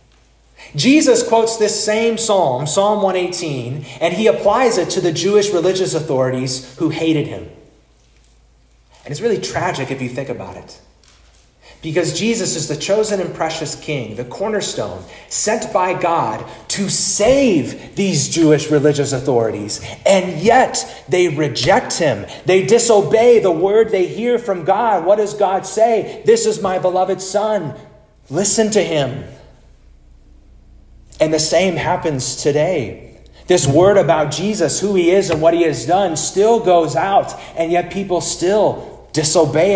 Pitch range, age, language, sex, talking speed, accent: 125-185 Hz, 30-49, English, male, 145 wpm, American